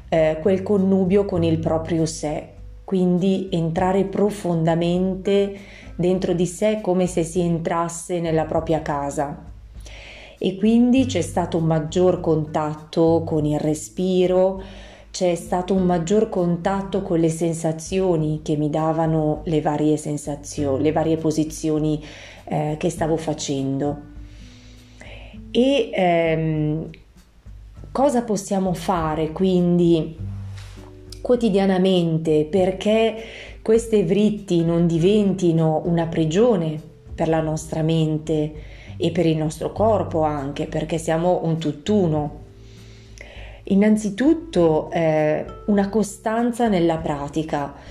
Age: 30-49